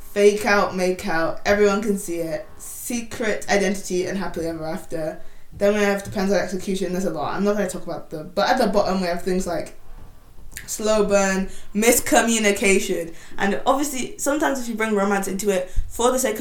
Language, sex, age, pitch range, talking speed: English, female, 20-39, 180-210 Hz, 190 wpm